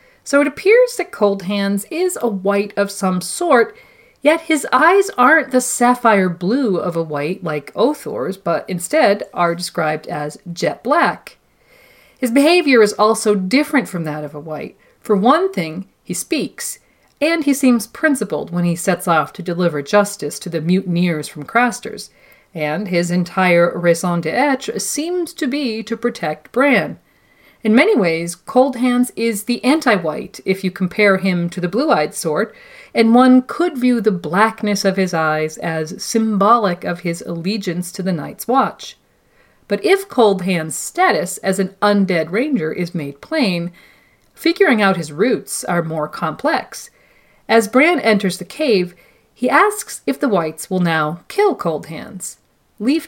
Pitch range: 175-255 Hz